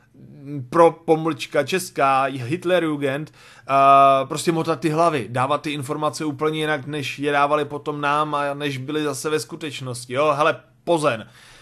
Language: Czech